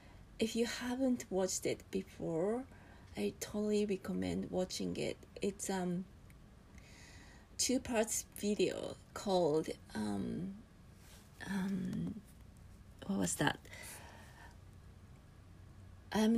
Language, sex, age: Japanese, female, 30-49